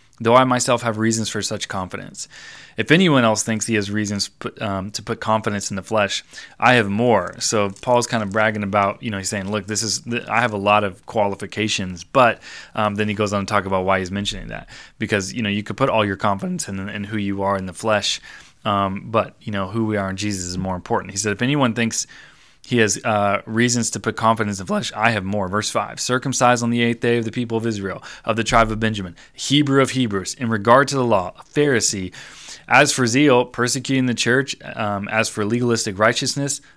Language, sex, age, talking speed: English, male, 20-39, 230 wpm